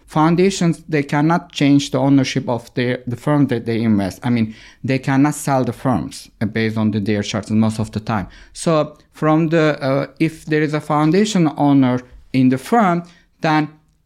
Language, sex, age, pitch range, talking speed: Danish, male, 50-69, 130-165 Hz, 185 wpm